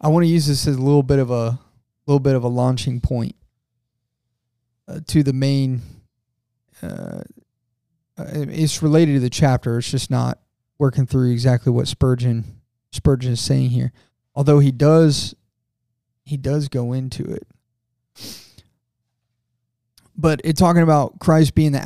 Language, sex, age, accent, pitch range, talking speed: English, male, 20-39, American, 120-145 Hz, 150 wpm